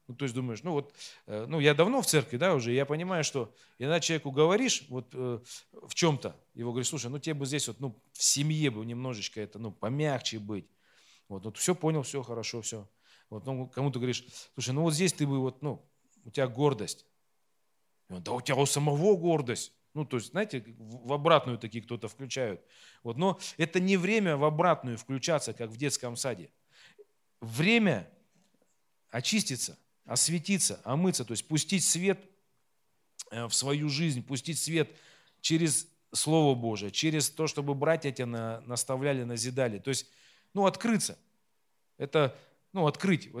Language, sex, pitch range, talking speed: Russian, male, 120-155 Hz, 165 wpm